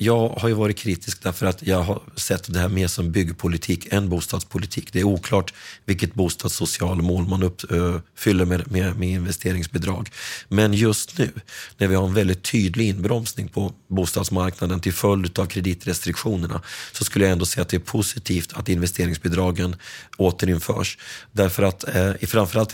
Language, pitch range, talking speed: Swedish, 90-105 Hz, 160 wpm